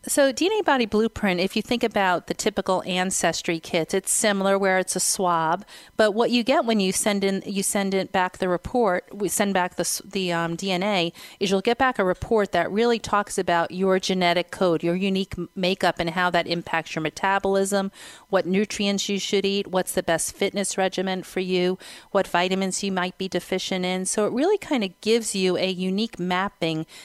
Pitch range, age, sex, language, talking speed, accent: 165-195 Hz, 40-59, female, English, 200 wpm, American